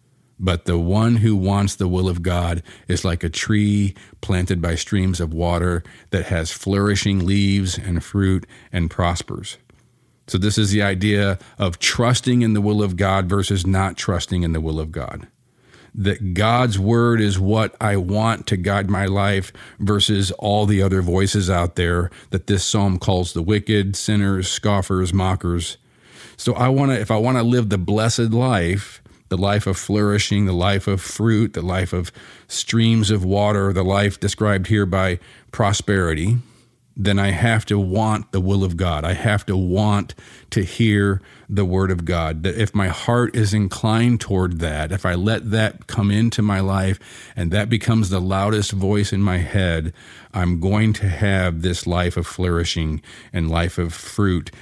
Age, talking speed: 40-59, 175 wpm